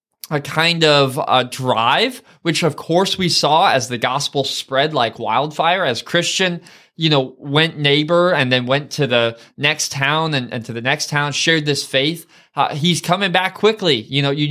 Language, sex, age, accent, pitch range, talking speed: English, male, 20-39, American, 135-170 Hz, 190 wpm